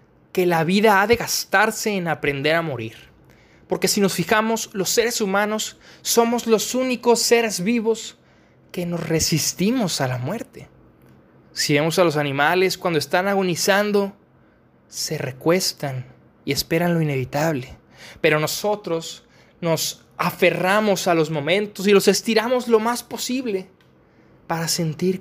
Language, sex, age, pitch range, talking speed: Spanish, male, 20-39, 150-195 Hz, 135 wpm